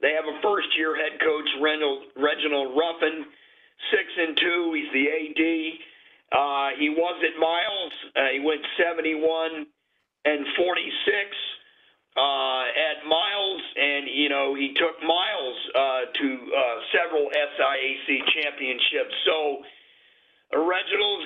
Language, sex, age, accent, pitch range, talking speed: English, male, 50-69, American, 150-225 Hz, 125 wpm